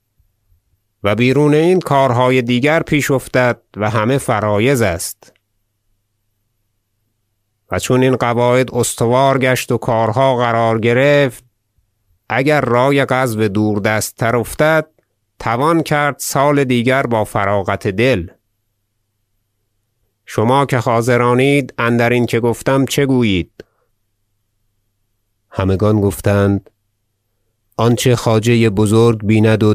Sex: male